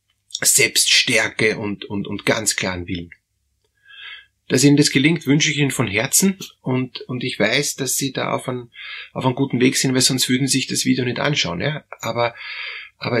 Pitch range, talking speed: 110-140 Hz, 180 wpm